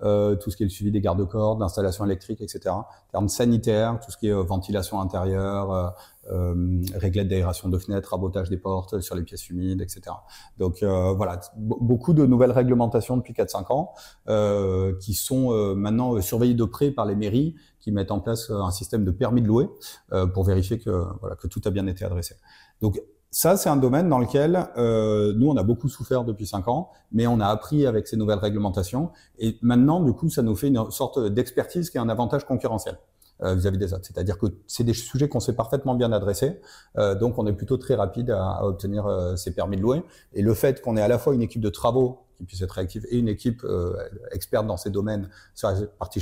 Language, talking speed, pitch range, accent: French, 225 wpm, 95-125 Hz, French